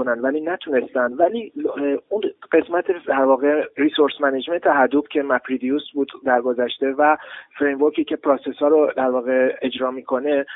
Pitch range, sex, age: 130-150 Hz, male, 30-49